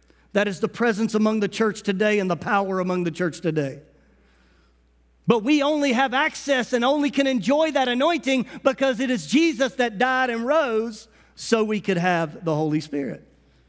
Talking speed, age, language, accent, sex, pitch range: 180 wpm, 50-69, English, American, male, 165-245 Hz